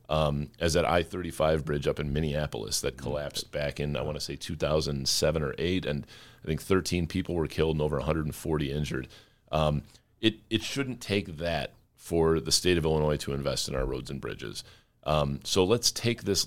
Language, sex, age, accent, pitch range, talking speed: English, male, 30-49, American, 75-95 Hz, 195 wpm